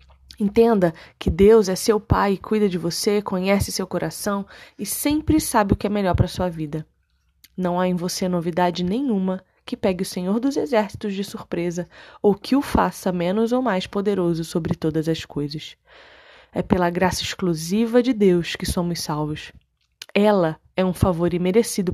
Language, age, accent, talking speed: Portuguese, 20-39, Brazilian, 170 wpm